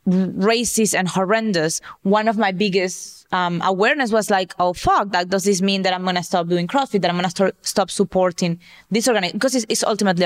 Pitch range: 180-205 Hz